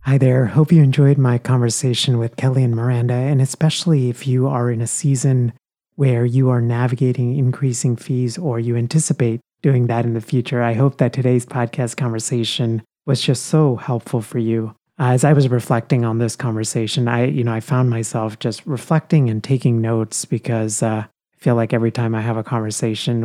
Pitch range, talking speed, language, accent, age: 115-140 Hz, 190 wpm, English, American, 30-49